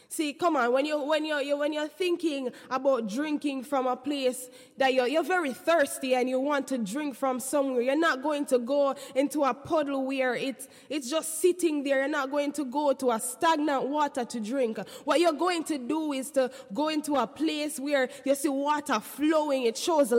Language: English